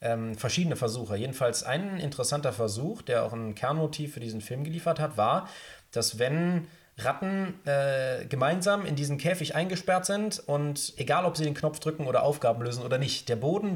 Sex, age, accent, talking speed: male, 30-49, German, 180 wpm